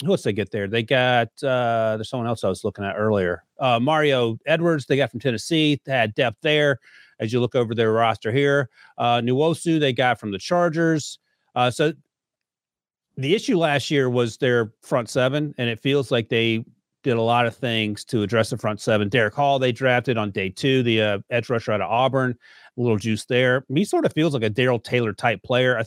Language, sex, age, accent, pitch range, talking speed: English, male, 40-59, American, 110-130 Hz, 220 wpm